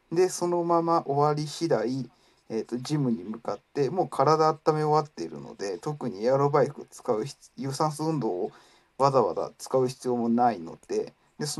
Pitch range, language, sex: 130-175 Hz, Japanese, male